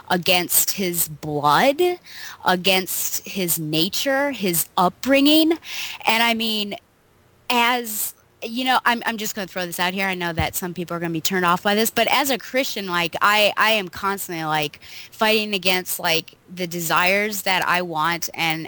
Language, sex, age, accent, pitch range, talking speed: English, female, 20-39, American, 155-205 Hz, 175 wpm